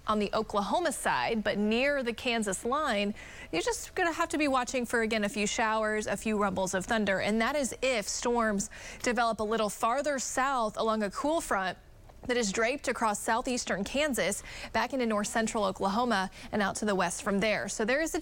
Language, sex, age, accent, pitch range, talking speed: English, female, 30-49, American, 205-245 Hz, 205 wpm